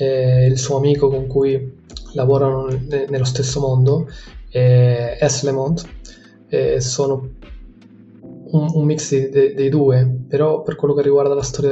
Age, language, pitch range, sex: 20-39, Italian, 125-145 Hz, male